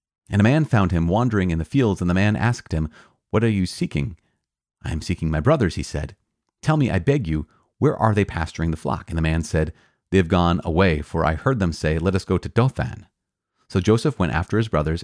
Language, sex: English, male